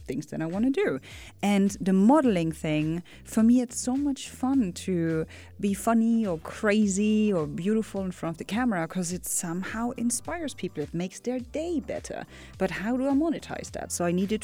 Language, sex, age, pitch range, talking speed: English, female, 30-49, 165-225 Hz, 195 wpm